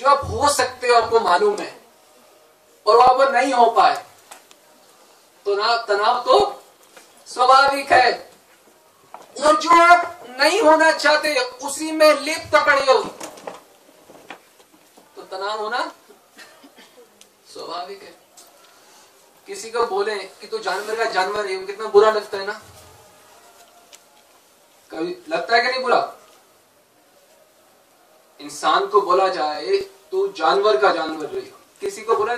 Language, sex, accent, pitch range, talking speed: Hindi, male, native, 220-355 Hz, 120 wpm